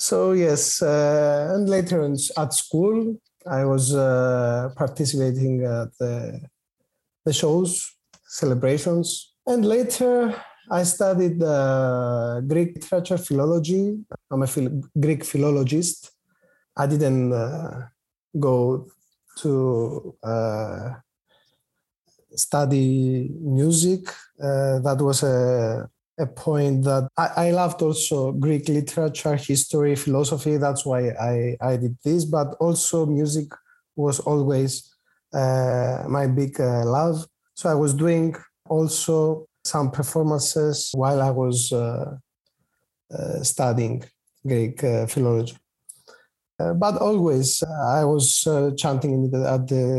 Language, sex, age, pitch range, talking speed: Greek, male, 30-49, 130-160 Hz, 110 wpm